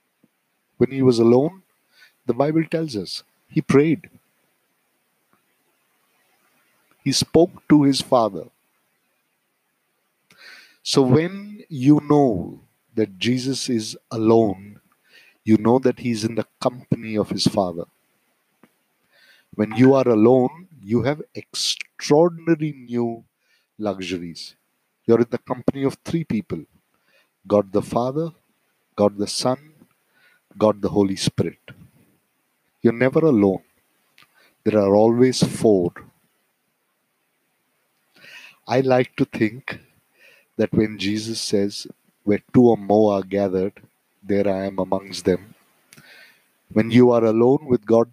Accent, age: Indian, 50-69